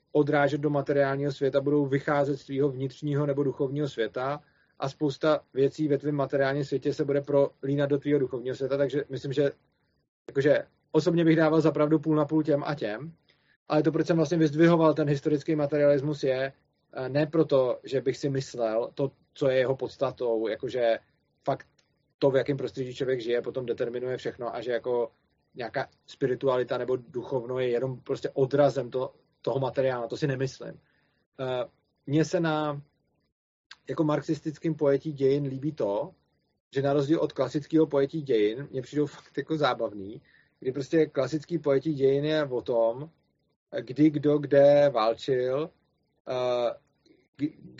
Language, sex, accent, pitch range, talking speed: Czech, male, native, 135-150 Hz, 155 wpm